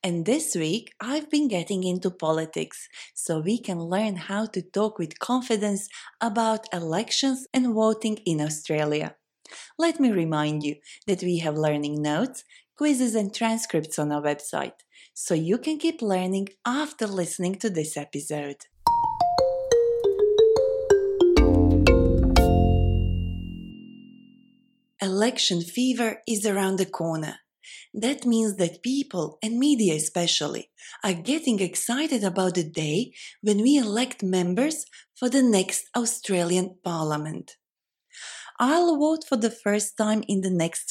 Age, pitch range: 30-49, 165-250 Hz